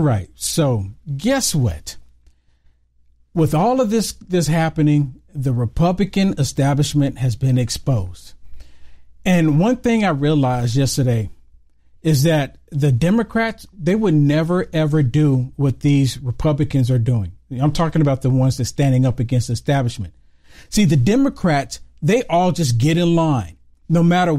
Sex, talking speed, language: male, 150 wpm, English